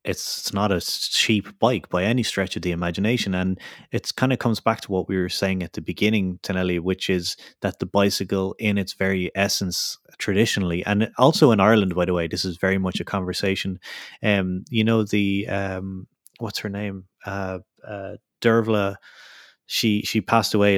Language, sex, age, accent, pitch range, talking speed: English, male, 20-39, Irish, 90-105 Hz, 185 wpm